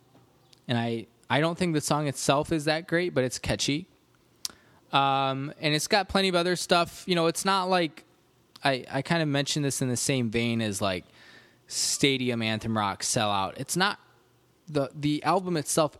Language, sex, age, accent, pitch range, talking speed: English, male, 20-39, American, 120-160 Hz, 185 wpm